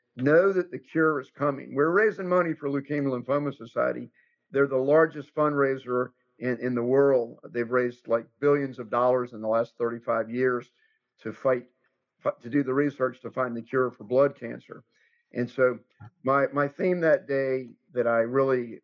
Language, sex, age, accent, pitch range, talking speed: English, male, 50-69, American, 125-150 Hz, 175 wpm